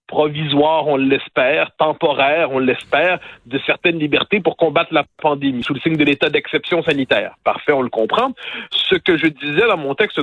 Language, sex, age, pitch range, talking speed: French, male, 50-69, 145-195 Hz, 180 wpm